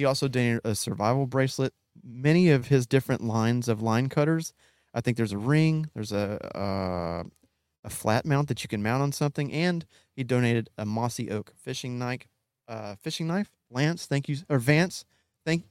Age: 30-49